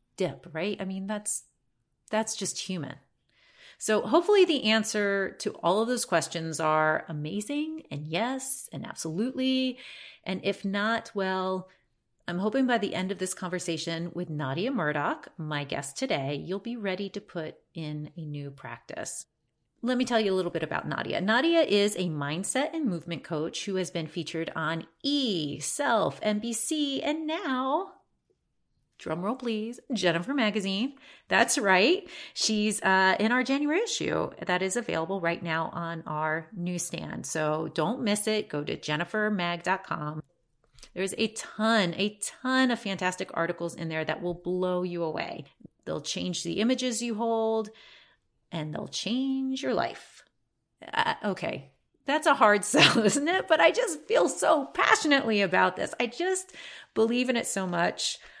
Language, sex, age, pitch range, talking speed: English, female, 30-49, 170-240 Hz, 155 wpm